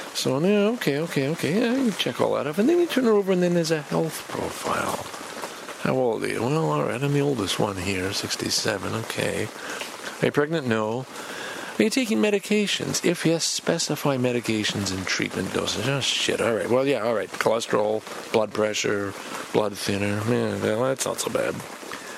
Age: 50-69